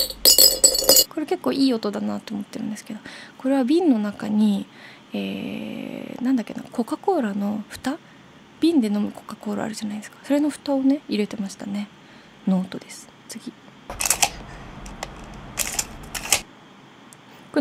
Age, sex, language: 20-39, female, Japanese